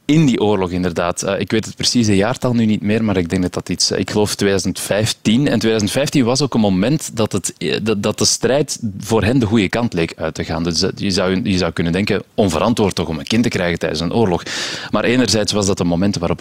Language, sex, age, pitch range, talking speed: Dutch, male, 30-49, 90-115 Hz, 240 wpm